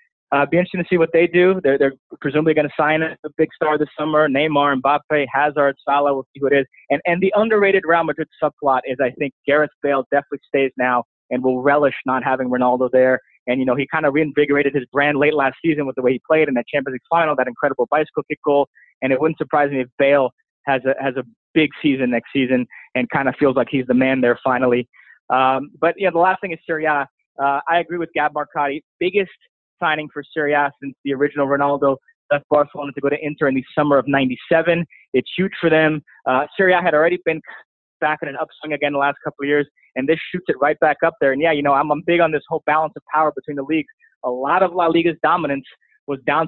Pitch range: 135-155 Hz